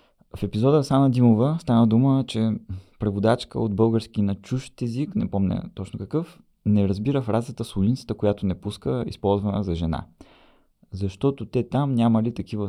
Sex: male